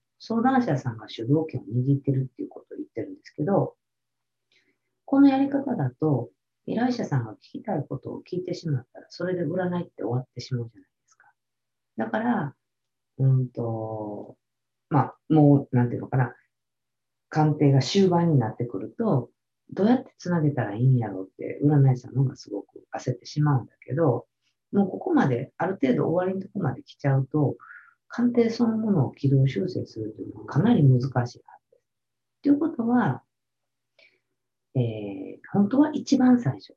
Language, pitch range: Japanese, 125-185 Hz